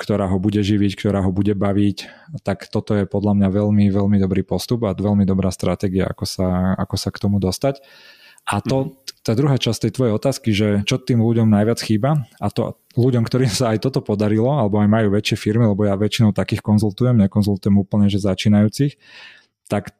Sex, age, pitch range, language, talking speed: male, 20-39, 105-120 Hz, Slovak, 190 wpm